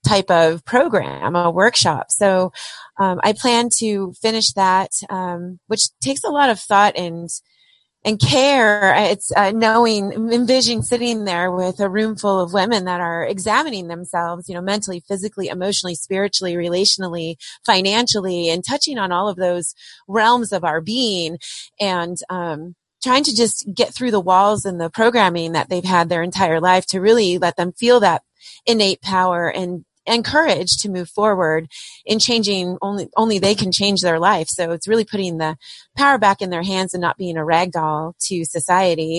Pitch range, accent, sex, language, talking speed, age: 180-220 Hz, American, female, English, 175 wpm, 30-49